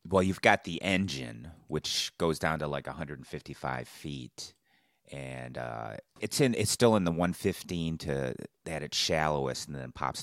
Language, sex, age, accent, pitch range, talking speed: English, male, 30-49, American, 65-85 Hz, 160 wpm